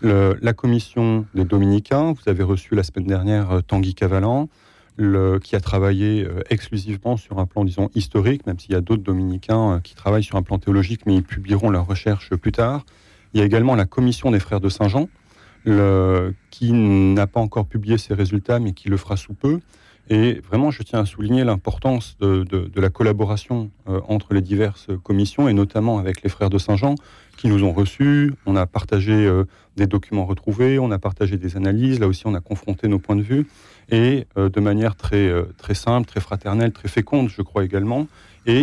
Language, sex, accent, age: French, male, French, 30-49